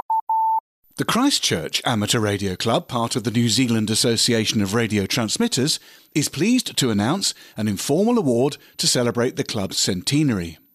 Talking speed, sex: 145 wpm, male